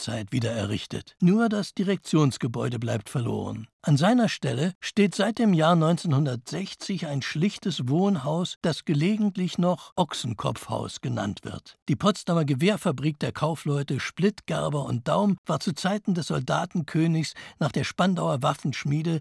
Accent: German